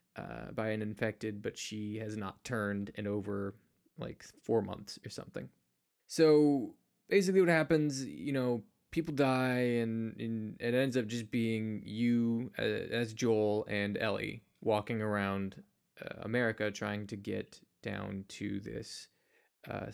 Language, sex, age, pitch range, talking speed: English, male, 20-39, 105-125 Hz, 145 wpm